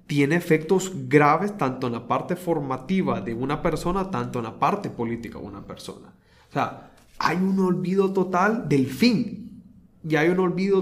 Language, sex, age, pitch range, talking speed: Spanish, male, 30-49, 135-180 Hz, 170 wpm